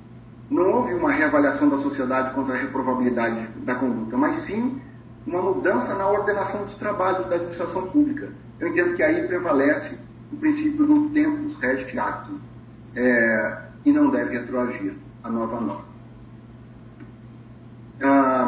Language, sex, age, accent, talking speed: Portuguese, male, 40-59, Brazilian, 130 wpm